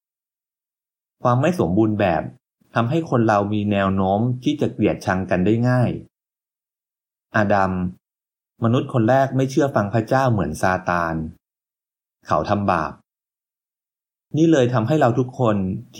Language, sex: Thai, male